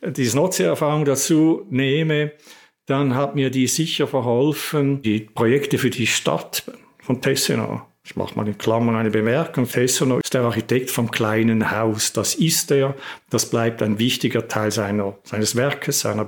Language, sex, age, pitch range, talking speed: German, male, 50-69, 115-145 Hz, 160 wpm